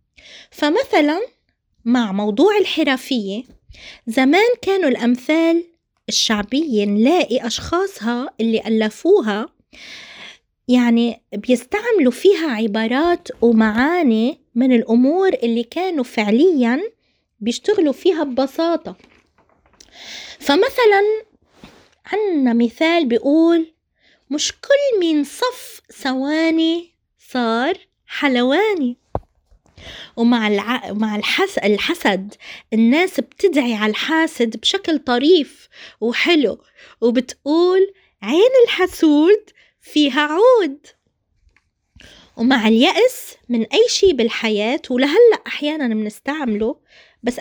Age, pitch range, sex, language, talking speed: 20-39, 235-355 Hz, female, Arabic, 75 wpm